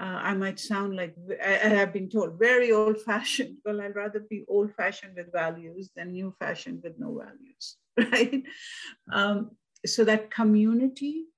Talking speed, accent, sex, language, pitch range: 165 wpm, Indian, female, English, 175-225 Hz